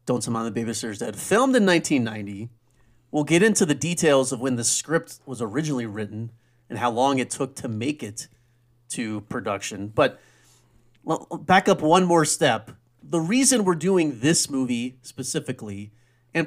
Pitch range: 115-140 Hz